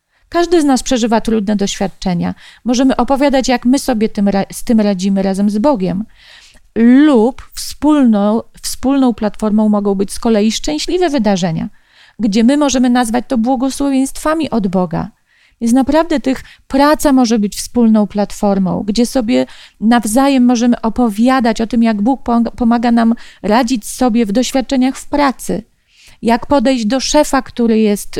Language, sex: Polish, female